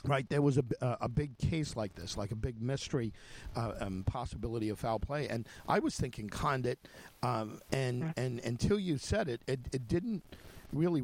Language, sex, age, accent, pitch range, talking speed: English, male, 50-69, American, 115-145 Hz, 190 wpm